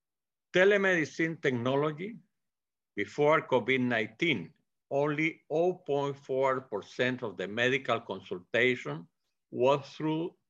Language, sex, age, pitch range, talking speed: Spanish, male, 50-69, 120-160 Hz, 70 wpm